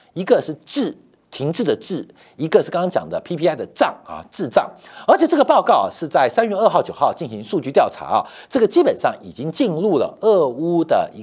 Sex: male